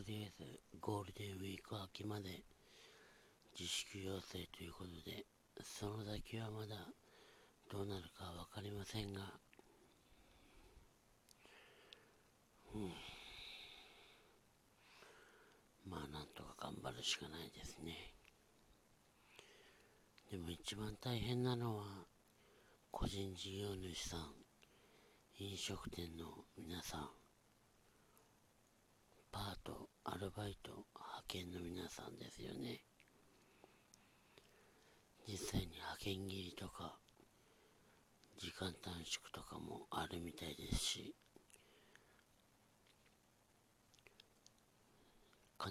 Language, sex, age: Japanese, male, 60-79